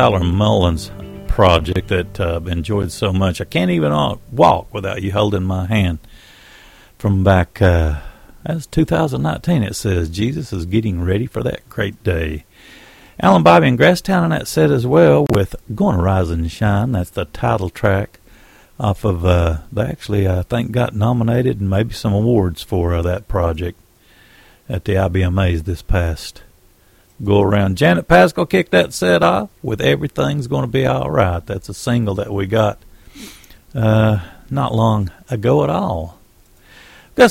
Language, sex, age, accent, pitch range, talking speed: English, male, 50-69, American, 90-115 Hz, 160 wpm